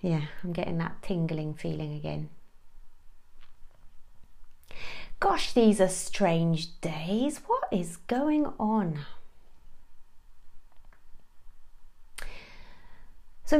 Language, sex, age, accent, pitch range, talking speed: English, female, 30-49, British, 160-225 Hz, 75 wpm